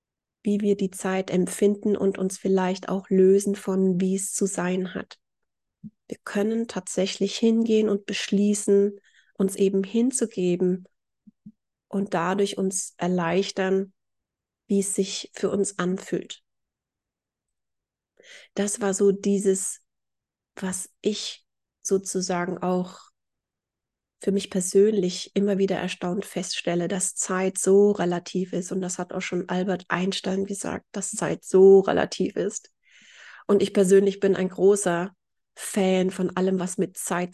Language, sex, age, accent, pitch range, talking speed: German, female, 30-49, German, 180-200 Hz, 130 wpm